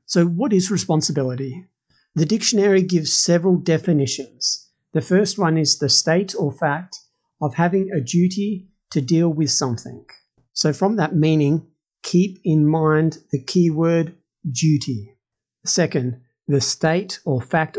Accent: Australian